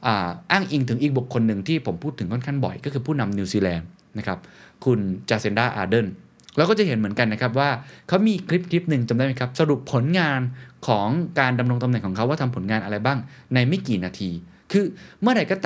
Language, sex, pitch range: Thai, male, 110-150 Hz